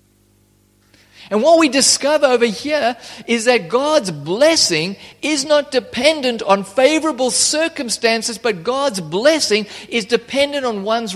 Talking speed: 125 wpm